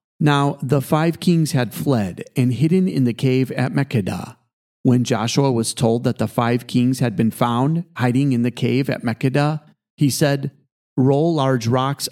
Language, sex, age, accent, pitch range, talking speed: English, male, 40-59, American, 120-145 Hz, 175 wpm